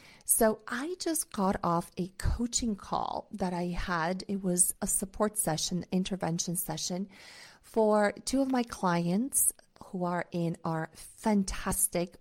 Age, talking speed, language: 40-59, 140 wpm, English